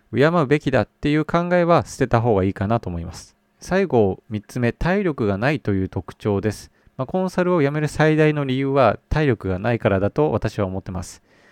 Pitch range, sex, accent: 105-150 Hz, male, native